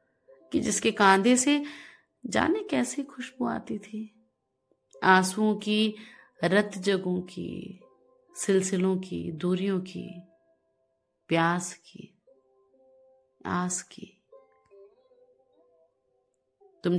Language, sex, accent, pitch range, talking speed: Hindi, female, native, 165-240 Hz, 80 wpm